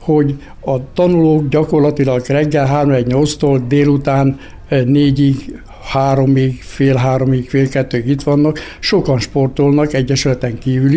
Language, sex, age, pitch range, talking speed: Hungarian, male, 60-79, 130-150 Hz, 115 wpm